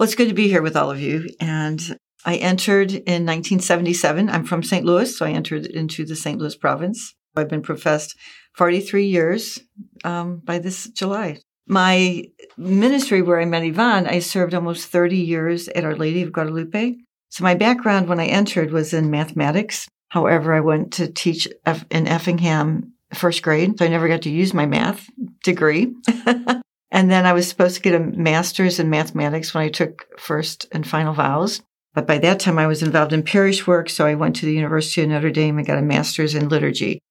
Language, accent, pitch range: English, American, 155-185 Hz